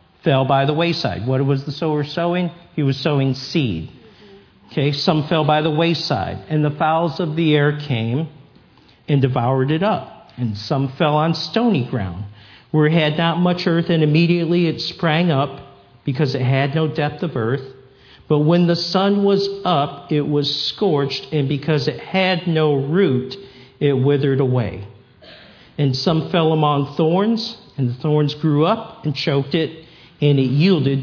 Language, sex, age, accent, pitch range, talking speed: English, male, 50-69, American, 140-175 Hz, 170 wpm